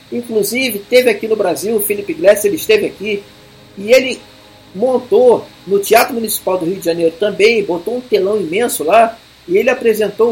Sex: male